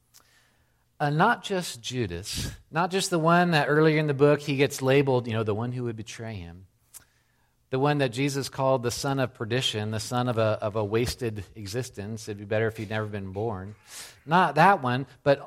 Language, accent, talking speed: English, American, 205 wpm